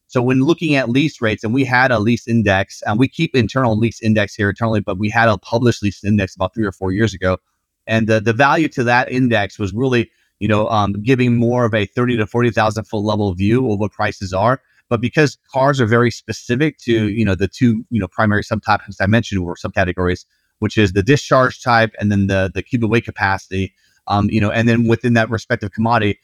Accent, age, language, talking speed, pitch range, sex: American, 30-49, English, 230 wpm, 100-120 Hz, male